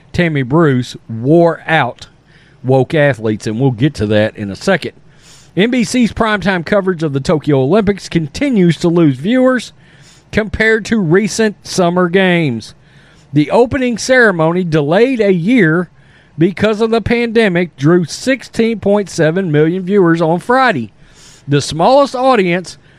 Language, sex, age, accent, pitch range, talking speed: English, male, 40-59, American, 145-215 Hz, 130 wpm